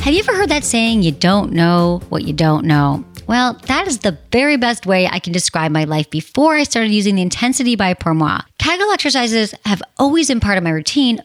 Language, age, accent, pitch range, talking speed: English, 30-49, American, 170-245 Hz, 230 wpm